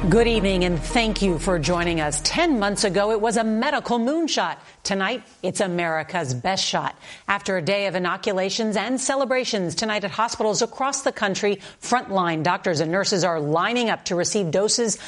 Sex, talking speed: female, 175 wpm